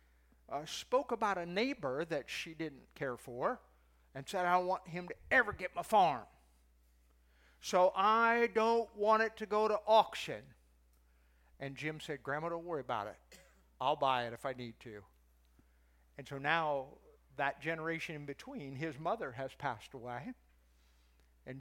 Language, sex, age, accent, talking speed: English, male, 50-69, American, 160 wpm